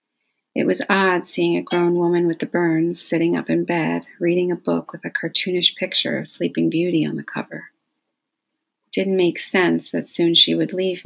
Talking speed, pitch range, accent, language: 190 wpm, 160-180 Hz, American, English